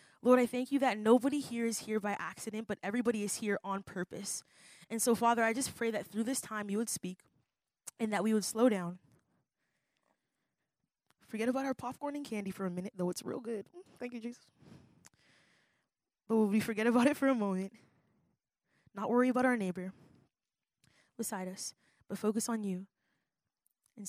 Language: English